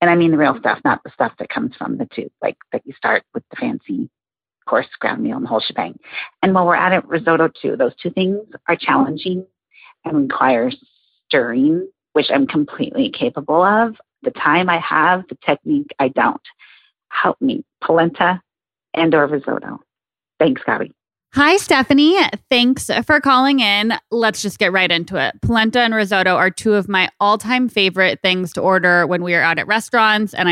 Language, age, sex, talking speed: English, 30-49, female, 185 wpm